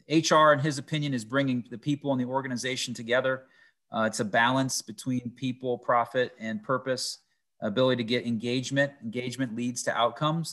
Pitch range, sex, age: 115-135 Hz, male, 30-49